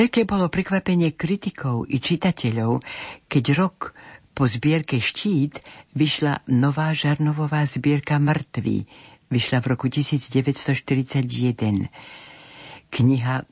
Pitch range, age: 120-150 Hz, 60-79